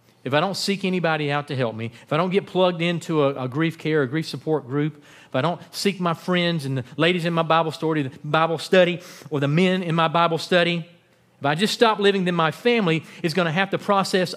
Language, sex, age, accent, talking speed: English, male, 40-59, American, 250 wpm